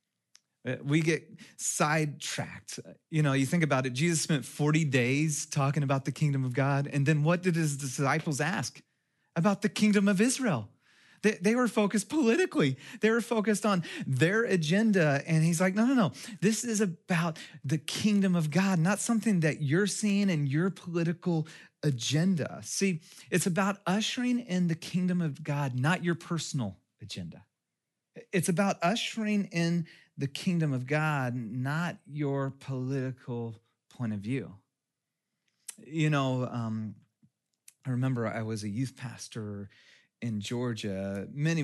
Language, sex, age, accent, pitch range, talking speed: English, male, 30-49, American, 130-180 Hz, 150 wpm